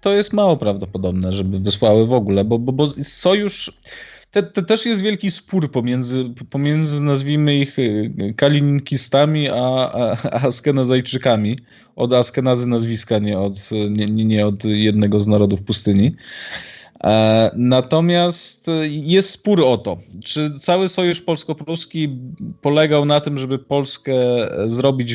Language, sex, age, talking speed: Polish, male, 20-39, 125 wpm